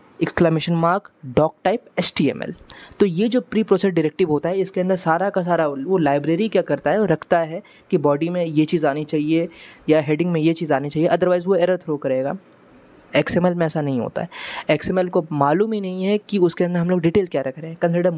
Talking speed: 220 wpm